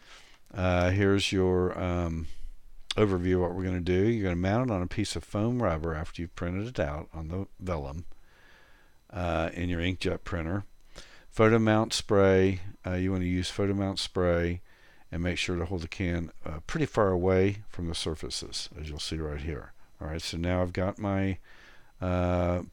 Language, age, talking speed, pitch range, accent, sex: English, 50-69, 195 wpm, 80-95 Hz, American, male